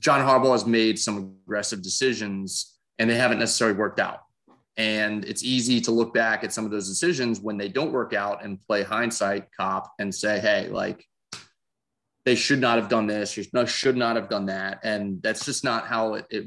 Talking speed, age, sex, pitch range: 200 wpm, 30-49, male, 105-130 Hz